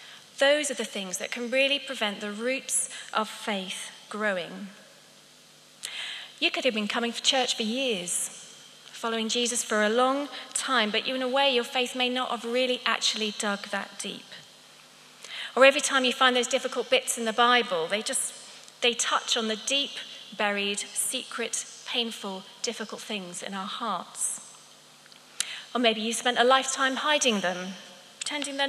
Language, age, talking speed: English, 30-49, 165 wpm